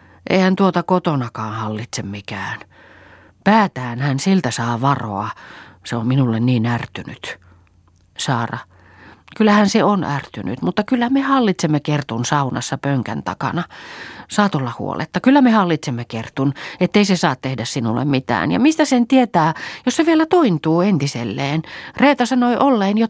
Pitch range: 105-170 Hz